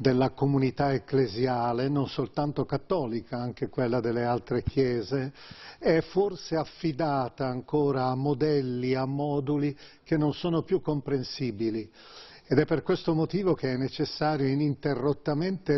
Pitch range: 130-160 Hz